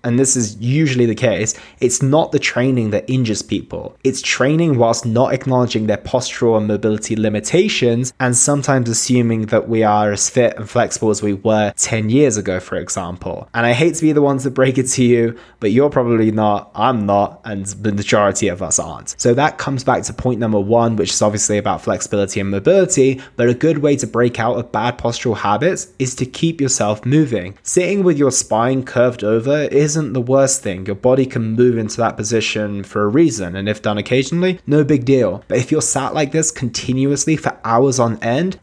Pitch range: 110-140 Hz